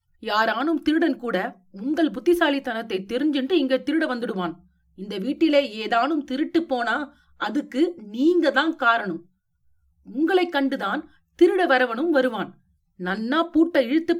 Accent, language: native, Tamil